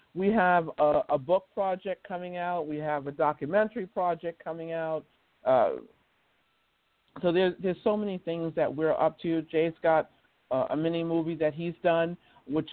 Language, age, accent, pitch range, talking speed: English, 50-69, American, 160-205 Hz, 165 wpm